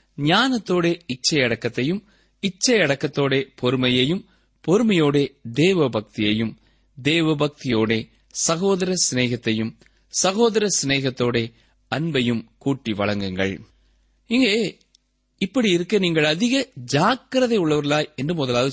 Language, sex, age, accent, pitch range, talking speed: Tamil, male, 30-49, native, 125-195 Hz, 80 wpm